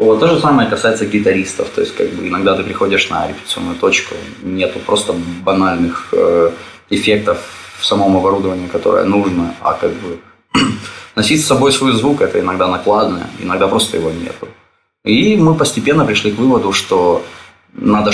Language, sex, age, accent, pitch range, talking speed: Russian, male, 20-39, native, 90-145 Hz, 160 wpm